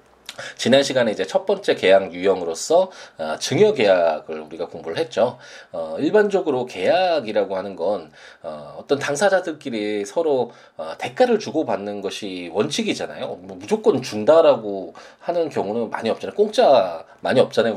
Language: Korean